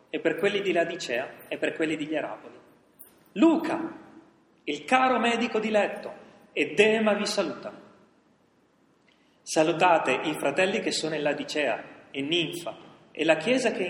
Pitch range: 145-215 Hz